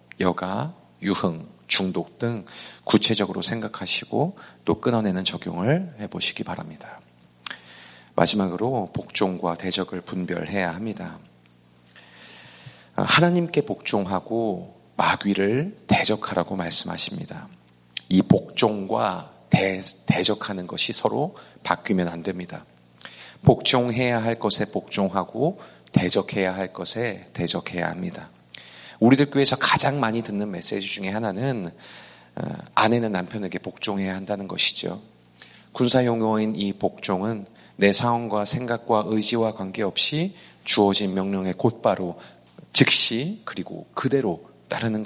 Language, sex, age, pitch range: Korean, male, 40-59, 90-115 Hz